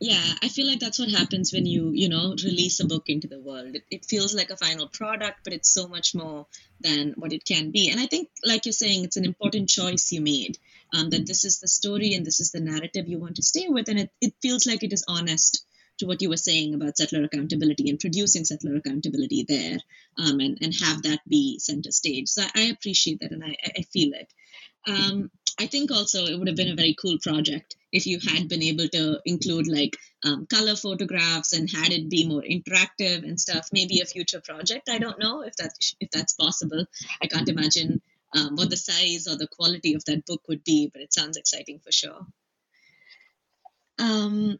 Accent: Indian